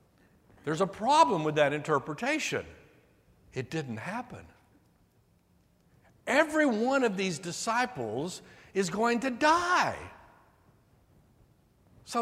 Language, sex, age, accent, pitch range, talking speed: English, male, 60-79, American, 165-245 Hz, 95 wpm